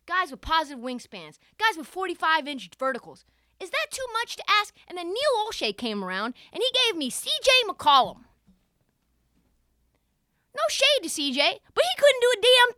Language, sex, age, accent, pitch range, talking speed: English, female, 20-39, American, 245-370 Hz, 175 wpm